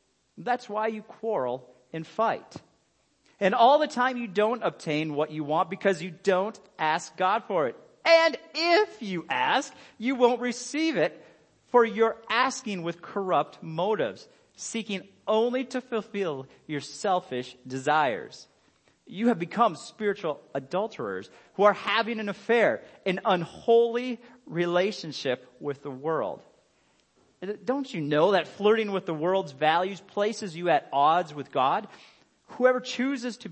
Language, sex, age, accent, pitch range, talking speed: English, male, 40-59, American, 145-225 Hz, 140 wpm